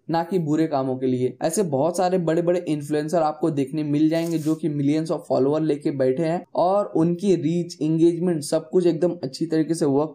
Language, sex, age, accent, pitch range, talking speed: Hindi, male, 10-29, native, 150-180 Hz, 205 wpm